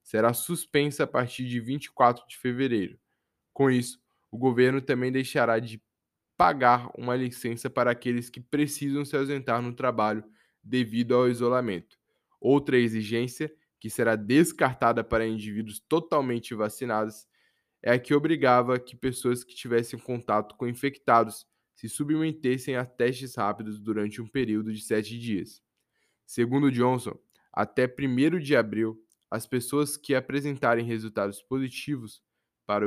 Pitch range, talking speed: 115-135 Hz, 135 wpm